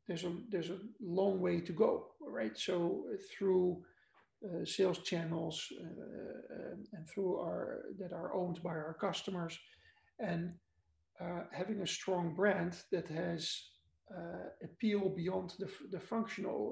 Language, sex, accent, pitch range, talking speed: English, male, Dutch, 170-195 Hz, 135 wpm